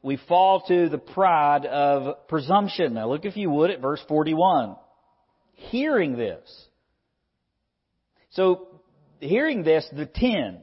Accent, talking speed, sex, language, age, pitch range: American, 125 wpm, male, English, 50-69, 140-190 Hz